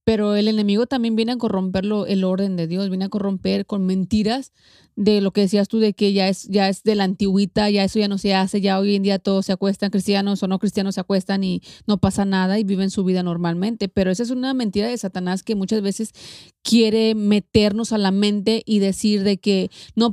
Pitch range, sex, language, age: 195-220 Hz, female, Spanish, 30-49